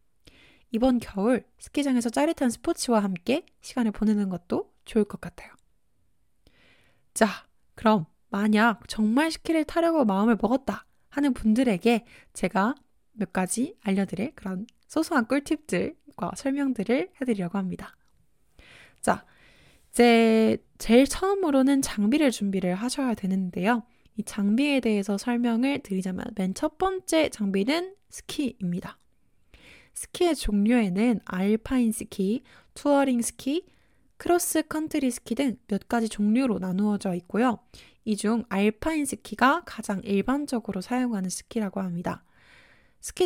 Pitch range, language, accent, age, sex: 205-275 Hz, Korean, native, 20-39, female